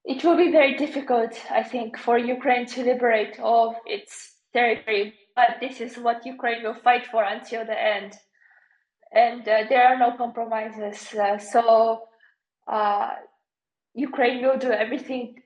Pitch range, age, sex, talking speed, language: 220-245 Hz, 20-39, female, 150 wpm, English